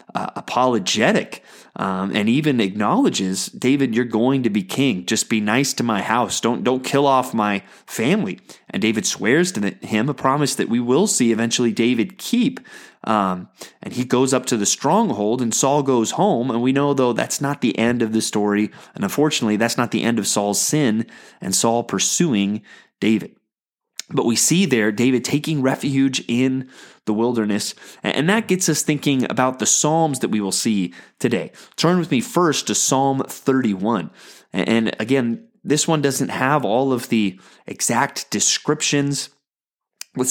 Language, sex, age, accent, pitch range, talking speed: English, male, 30-49, American, 110-140 Hz, 175 wpm